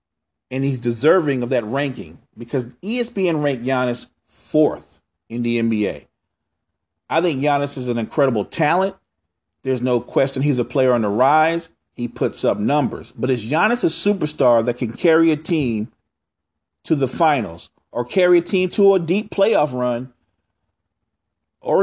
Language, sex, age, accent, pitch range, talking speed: English, male, 40-59, American, 115-160 Hz, 155 wpm